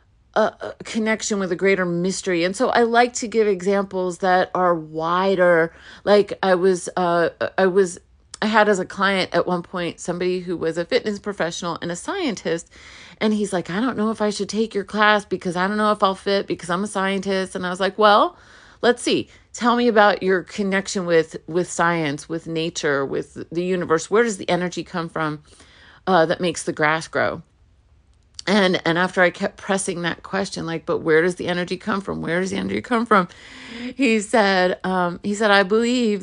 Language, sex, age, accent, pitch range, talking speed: English, female, 30-49, American, 170-210 Hz, 205 wpm